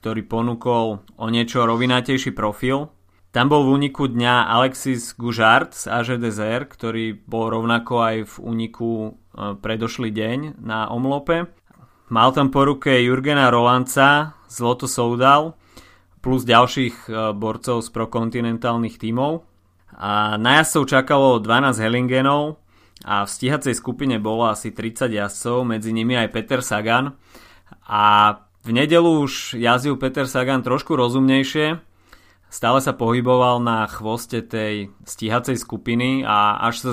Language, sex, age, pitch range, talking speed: Slovak, male, 30-49, 110-130 Hz, 125 wpm